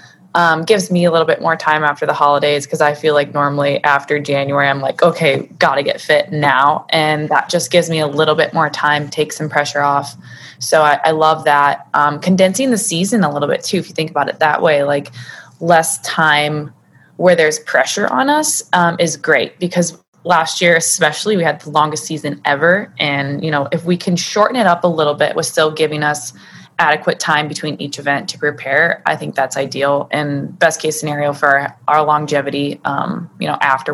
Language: English